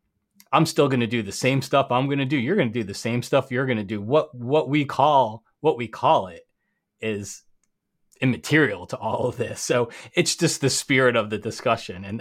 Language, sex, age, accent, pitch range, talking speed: English, male, 30-49, American, 110-140 Hz, 225 wpm